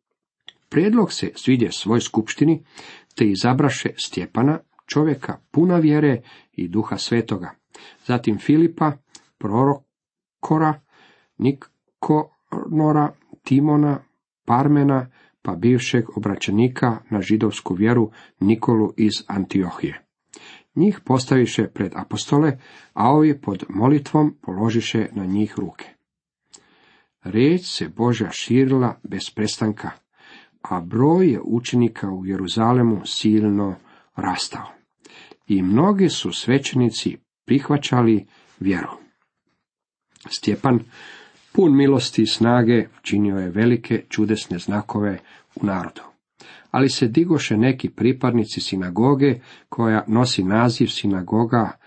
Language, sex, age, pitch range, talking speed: Croatian, male, 50-69, 105-135 Hz, 95 wpm